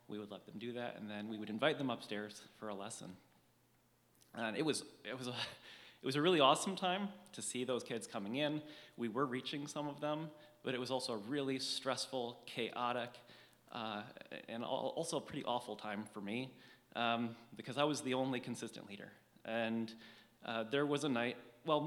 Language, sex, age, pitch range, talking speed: English, male, 30-49, 115-135 Hz, 200 wpm